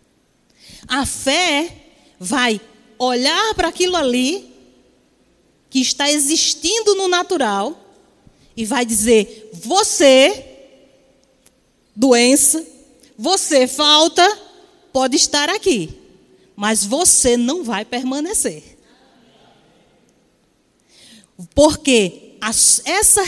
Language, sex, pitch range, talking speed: Portuguese, female, 245-345 Hz, 75 wpm